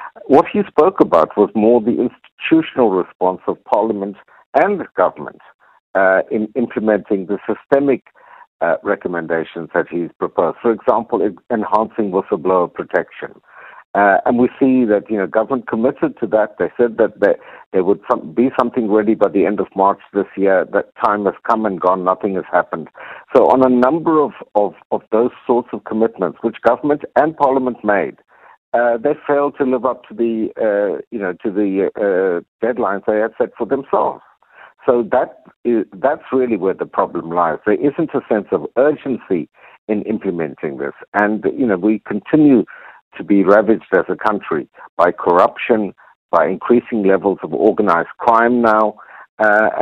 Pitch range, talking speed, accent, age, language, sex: 105-140 Hz, 165 wpm, Indian, 50-69, English, male